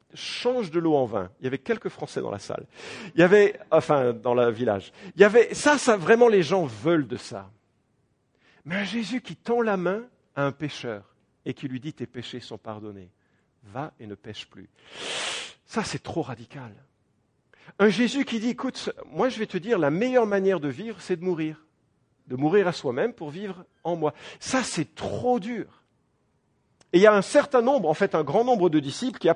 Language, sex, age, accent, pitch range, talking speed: English, male, 50-69, French, 140-220 Hz, 215 wpm